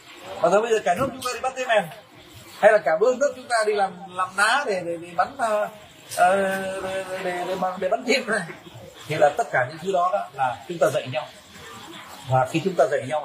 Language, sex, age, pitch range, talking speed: Vietnamese, male, 30-49, 160-235 Hz, 230 wpm